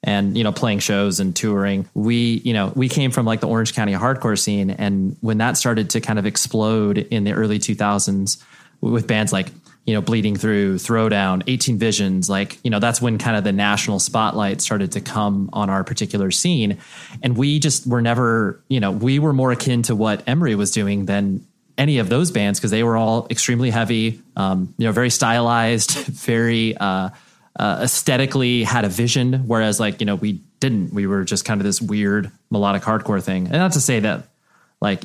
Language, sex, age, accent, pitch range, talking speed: English, male, 30-49, American, 100-120 Hz, 205 wpm